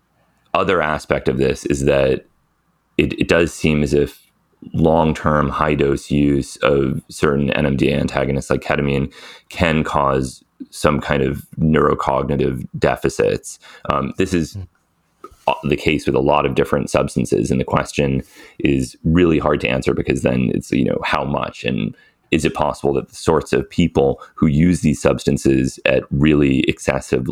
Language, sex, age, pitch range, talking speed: English, male, 30-49, 65-75 Hz, 155 wpm